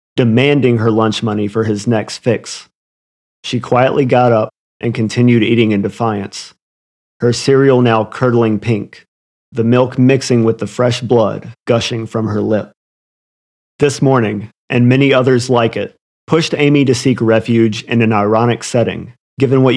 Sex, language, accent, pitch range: male, English, American, 110-130 Hz